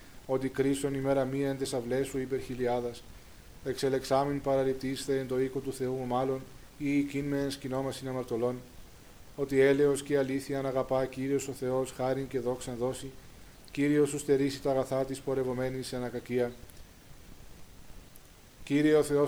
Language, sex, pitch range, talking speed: Greek, male, 125-140 Hz, 140 wpm